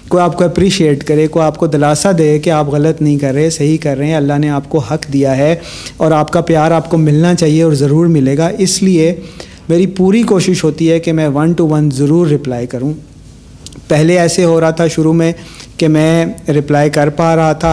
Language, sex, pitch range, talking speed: Urdu, male, 145-175 Hz, 230 wpm